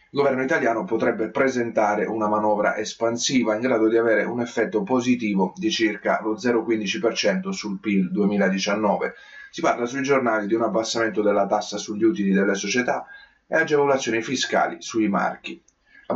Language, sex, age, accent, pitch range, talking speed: Italian, male, 30-49, native, 105-125 Hz, 150 wpm